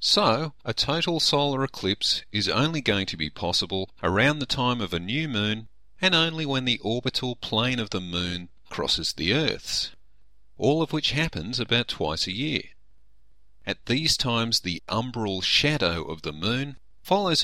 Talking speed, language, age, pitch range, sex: 165 wpm, English, 40-59, 90-125 Hz, male